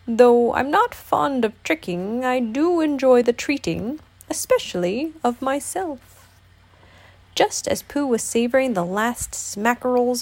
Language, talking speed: English, 130 wpm